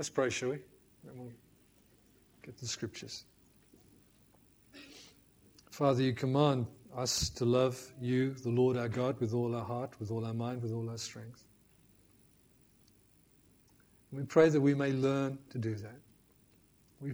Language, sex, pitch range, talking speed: English, male, 115-135 Hz, 145 wpm